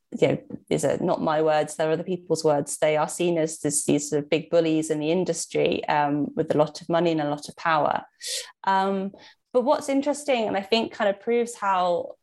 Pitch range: 160-205 Hz